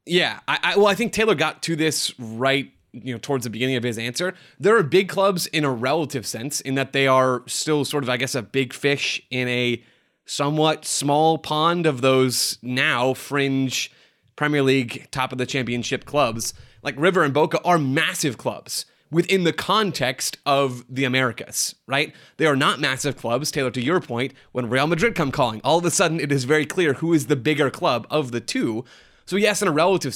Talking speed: 205 wpm